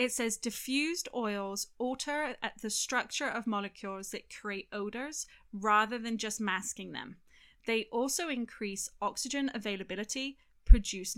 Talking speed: 130 wpm